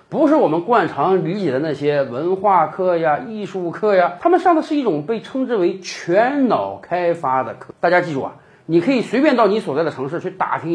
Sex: male